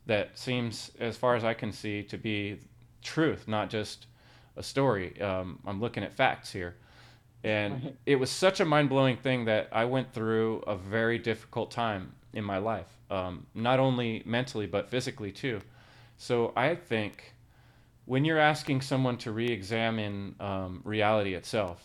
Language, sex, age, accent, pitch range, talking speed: English, male, 30-49, American, 105-125 Hz, 160 wpm